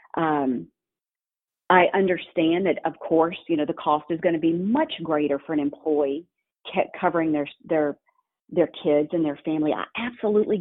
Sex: female